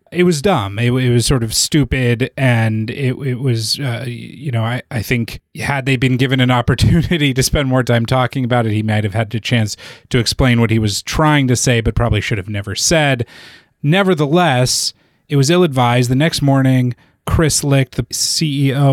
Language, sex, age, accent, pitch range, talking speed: English, male, 30-49, American, 115-135 Hz, 200 wpm